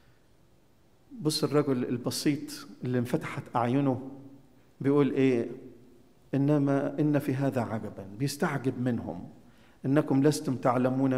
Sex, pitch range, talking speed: male, 130-170 Hz, 95 wpm